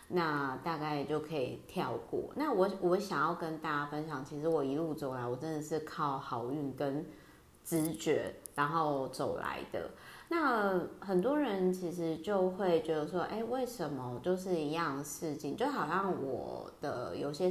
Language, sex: Chinese, female